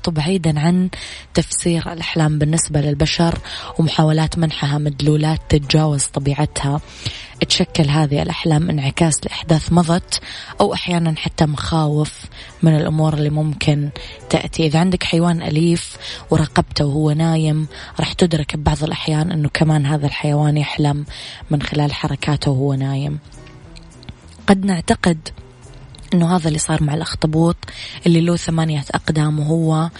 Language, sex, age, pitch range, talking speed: Arabic, female, 20-39, 145-165 Hz, 120 wpm